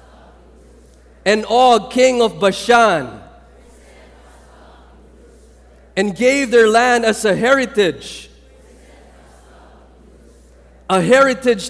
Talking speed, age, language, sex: 70 wpm, 40-59, English, male